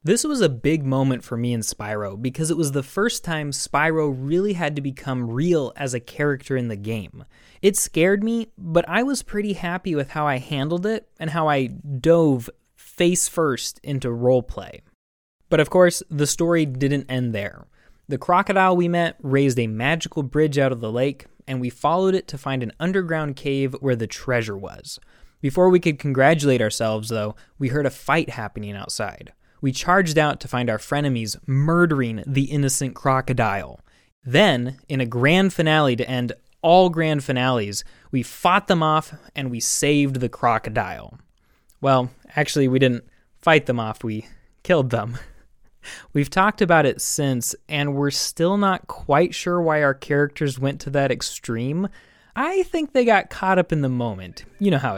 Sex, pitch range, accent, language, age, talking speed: male, 125-165 Hz, American, English, 20-39, 180 wpm